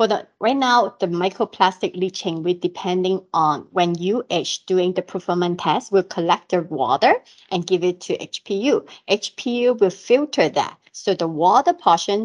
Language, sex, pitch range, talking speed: English, female, 175-205 Hz, 160 wpm